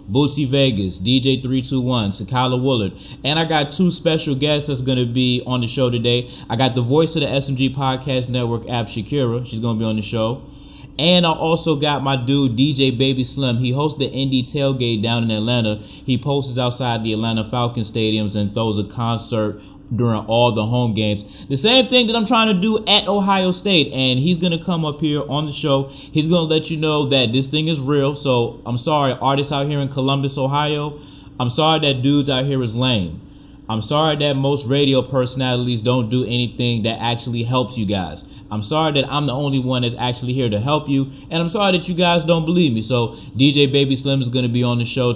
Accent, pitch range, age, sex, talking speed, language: American, 120-150 Hz, 20-39, male, 220 wpm, English